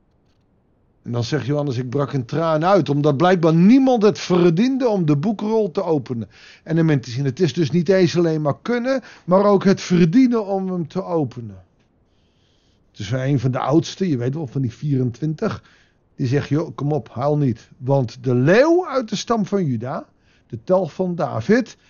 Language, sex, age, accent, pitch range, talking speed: Dutch, male, 50-69, Dutch, 130-185 Hz, 185 wpm